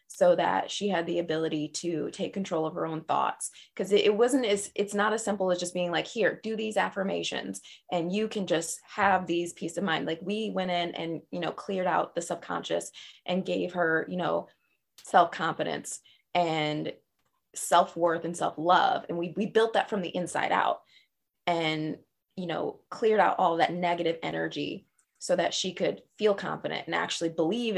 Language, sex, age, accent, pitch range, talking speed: English, female, 20-39, American, 165-195 Hz, 185 wpm